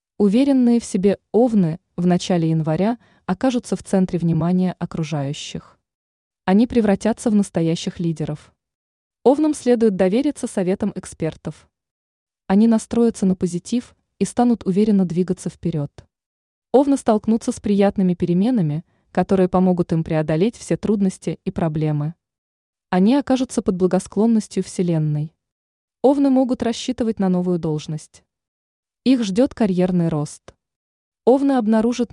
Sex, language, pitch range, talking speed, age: female, Russian, 170-225 Hz, 115 wpm, 20-39